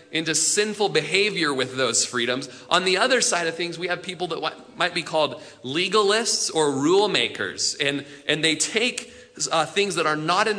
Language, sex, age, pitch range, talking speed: English, male, 30-49, 155-220 Hz, 185 wpm